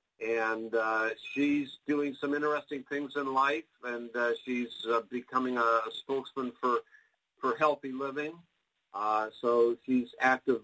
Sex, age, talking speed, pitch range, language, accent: male, 50-69, 140 wpm, 120-150 Hz, English, American